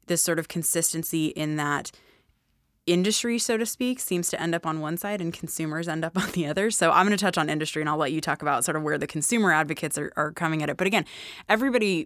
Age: 20-39